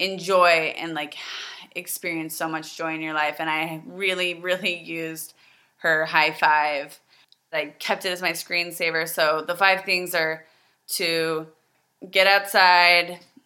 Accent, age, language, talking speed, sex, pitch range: American, 20-39, English, 145 wpm, female, 160-185 Hz